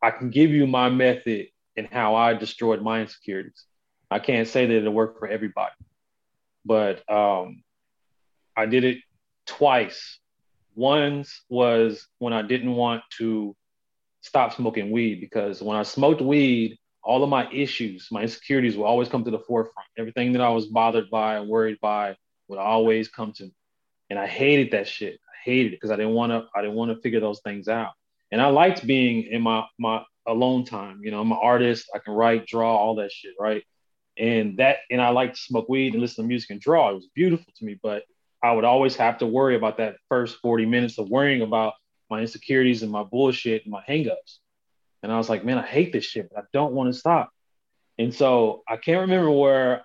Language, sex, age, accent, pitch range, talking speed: English, male, 20-39, American, 110-125 Hz, 205 wpm